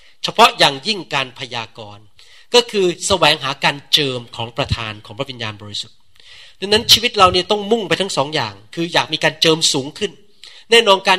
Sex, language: male, Thai